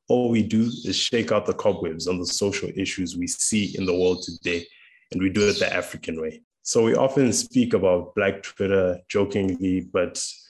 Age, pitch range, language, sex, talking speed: 20-39, 90-105 Hz, English, male, 195 wpm